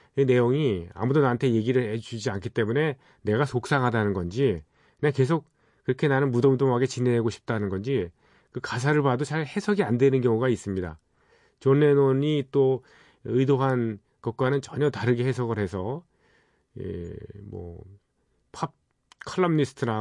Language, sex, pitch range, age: Korean, male, 100-140 Hz, 40-59